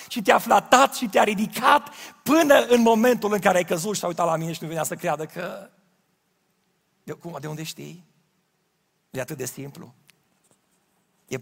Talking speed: 170 wpm